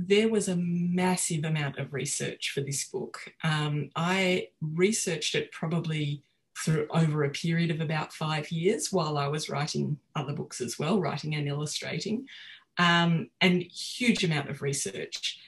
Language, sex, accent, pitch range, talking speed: English, female, Australian, 150-180 Hz, 165 wpm